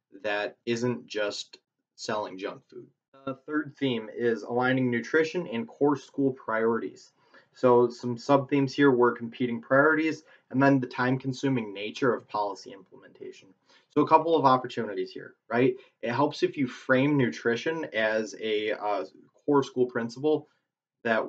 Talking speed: 150 wpm